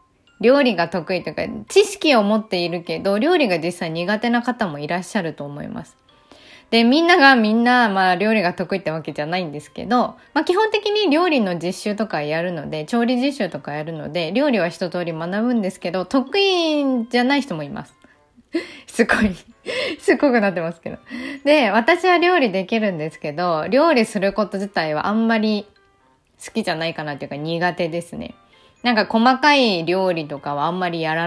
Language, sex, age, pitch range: Japanese, female, 20-39, 170-240 Hz